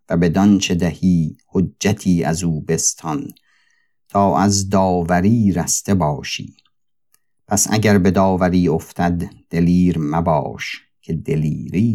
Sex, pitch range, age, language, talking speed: male, 85-100 Hz, 50-69, Persian, 105 wpm